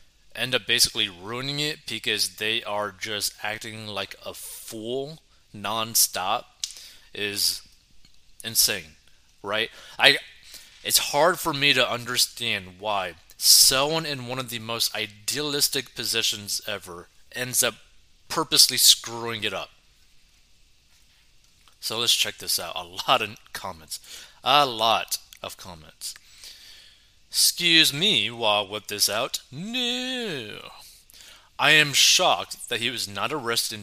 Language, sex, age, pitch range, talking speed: English, male, 30-49, 105-135 Hz, 125 wpm